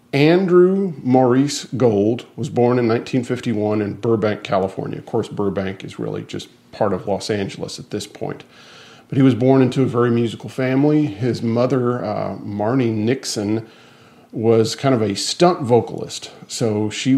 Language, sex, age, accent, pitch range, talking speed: English, male, 40-59, American, 105-130 Hz, 155 wpm